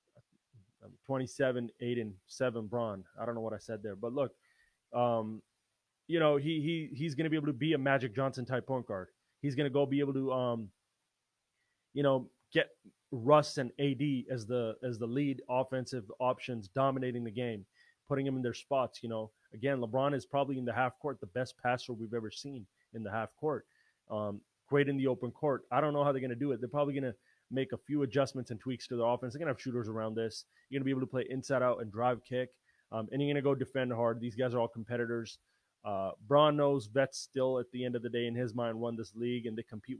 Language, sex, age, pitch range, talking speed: English, male, 20-39, 120-135 Hz, 240 wpm